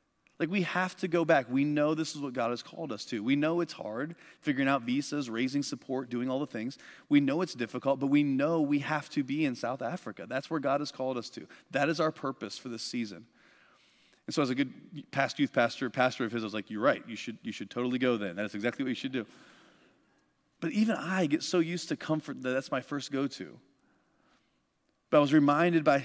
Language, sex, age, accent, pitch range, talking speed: English, male, 30-49, American, 130-170 Hz, 235 wpm